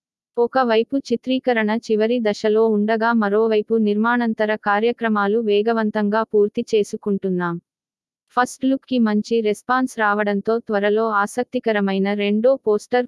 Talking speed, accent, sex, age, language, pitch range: 95 wpm, native, female, 20-39, Telugu, 205-240 Hz